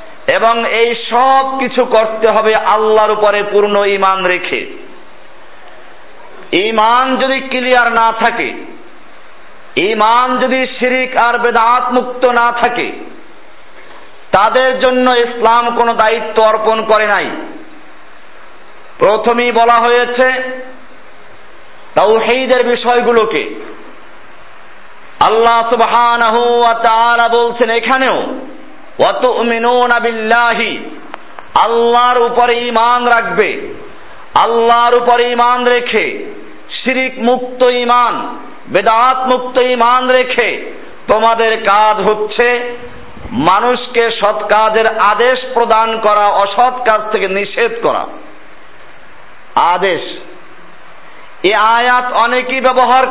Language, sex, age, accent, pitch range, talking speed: Bengali, male, 50-69, native, 225-255 Hz, 55 wpm